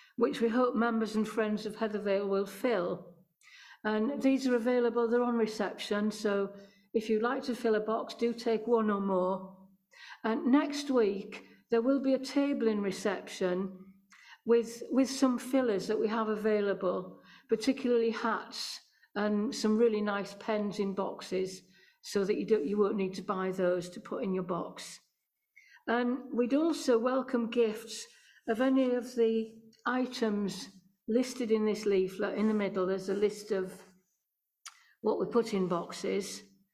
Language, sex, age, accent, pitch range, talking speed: English, female, 50-69, British, 200-250 Hz, 160 wpm